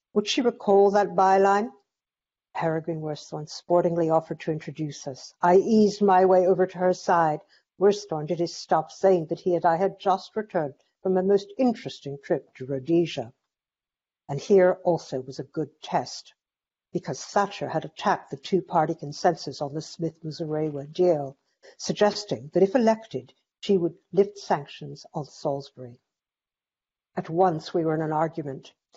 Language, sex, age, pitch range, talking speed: English, female, 60-79, 150-190 Hz, 155 wpm